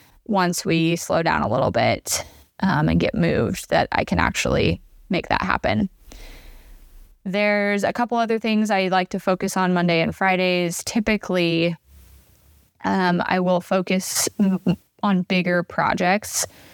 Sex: female